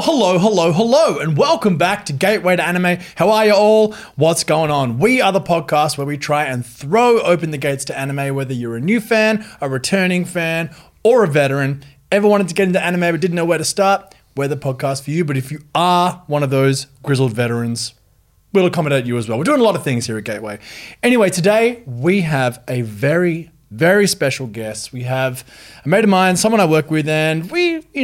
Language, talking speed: English, 225 wpm